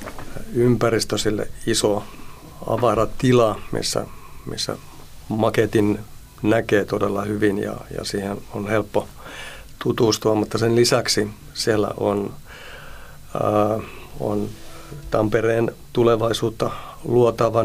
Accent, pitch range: native, 105-115 Hz